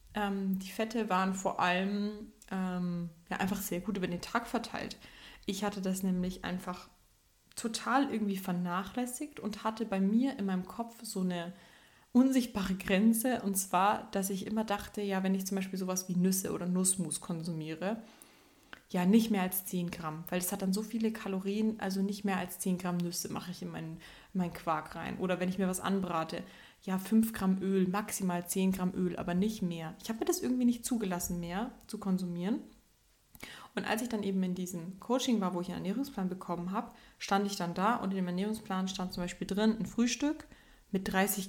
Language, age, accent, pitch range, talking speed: German, 20-39, German, 180-220 Hz, 195 wpm